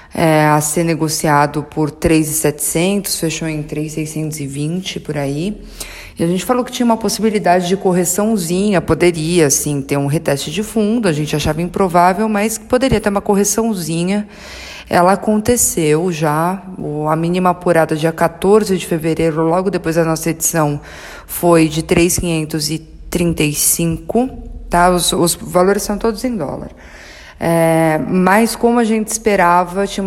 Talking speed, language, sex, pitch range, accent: 140 wpm, Portuguese, female, 160-190 Hz, Brazilian